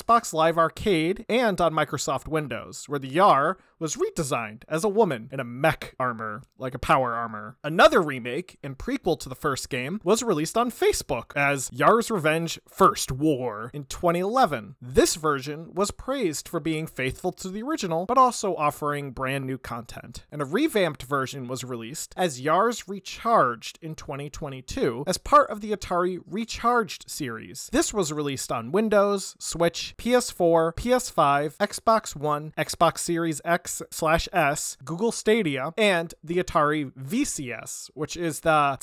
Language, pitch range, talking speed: English, 140-205 Hz, 155 wpm